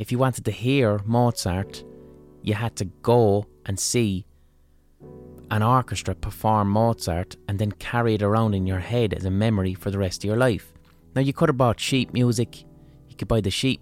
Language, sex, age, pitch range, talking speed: English, male, 30-49, 90-120 Hz, 195 wpm